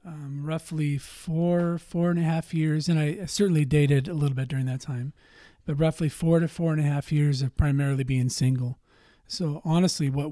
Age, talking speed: 40-59, 200 wpm